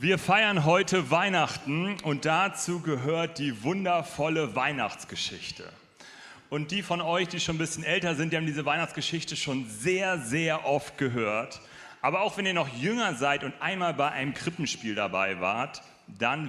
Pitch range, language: 145-190 Hz, German